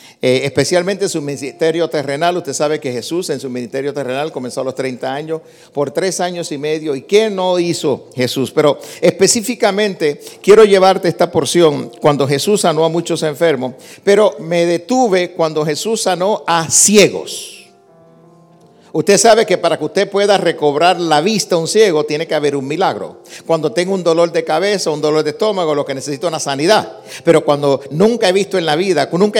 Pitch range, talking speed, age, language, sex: 155-215 Hz, 190 wpm, 50-69, Spanish, male